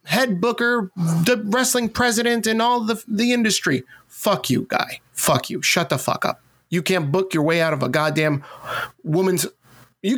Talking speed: 175 wpm